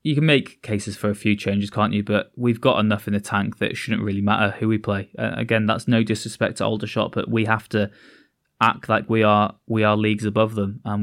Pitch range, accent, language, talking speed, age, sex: 105-115 Hz, British, English, 245 wpm, 20-39, male